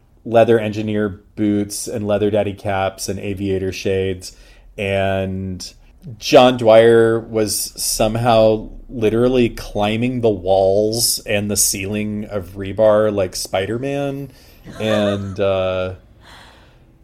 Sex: male